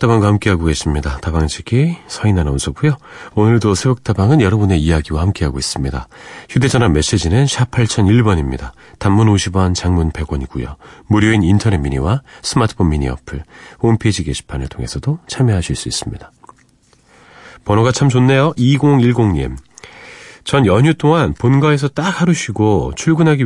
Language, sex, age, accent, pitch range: Korean, male, 40-59, native, 85-135 Hz